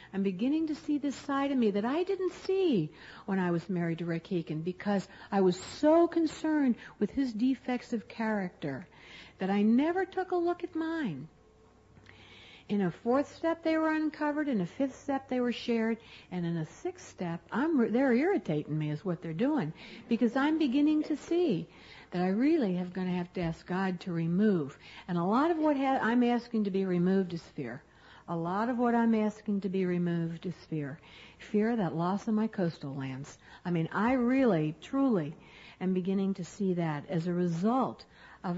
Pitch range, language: 170-255 Hz, English